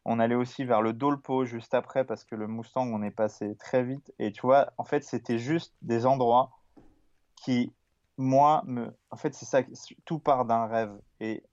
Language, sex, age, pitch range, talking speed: French, male, 20-39, 110-130 Hz, 200 wpm